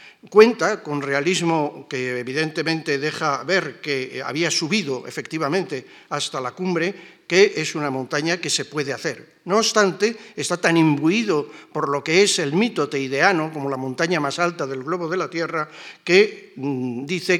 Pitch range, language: 145-185 Hz, Spanish